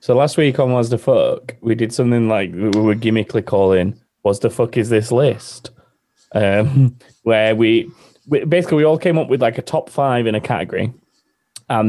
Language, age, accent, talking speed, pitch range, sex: English, 20-39, British, 195 wpm, 100-135 Hz, male